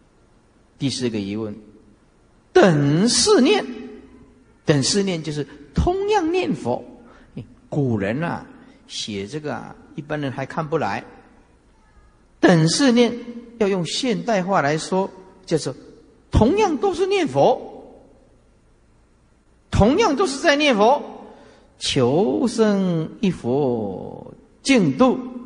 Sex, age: male, 50-69